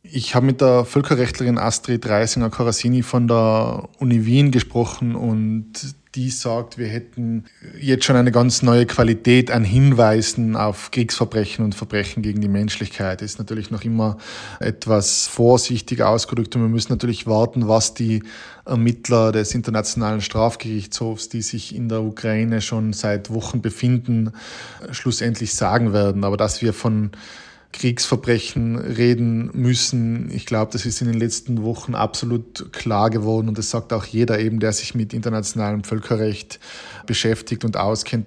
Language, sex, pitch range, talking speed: German, male, 110-120 Hz, 150 wpm